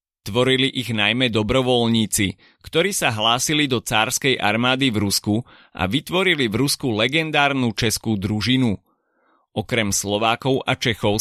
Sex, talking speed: male, 125 wpm